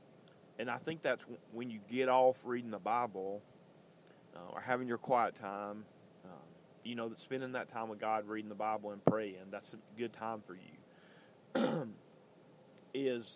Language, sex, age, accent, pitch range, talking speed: English, male, 30-49, American, 110-135 Hz, 170 wpm